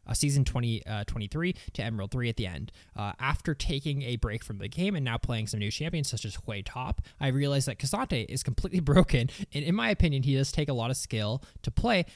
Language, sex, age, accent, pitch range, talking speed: English, male, 20-39, American, 115-150 Hz, 240 wpm